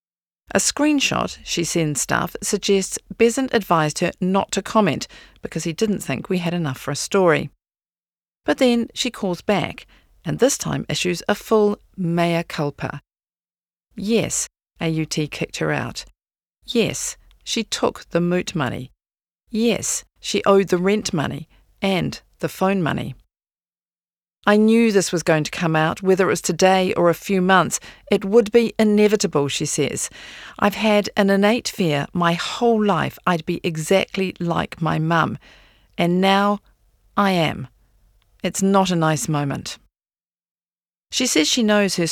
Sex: female